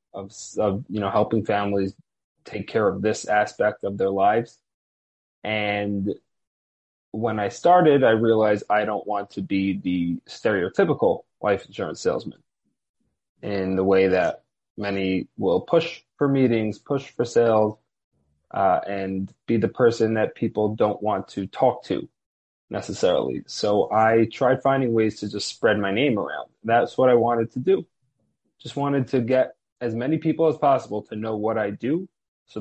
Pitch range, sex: 100-125 Hz, male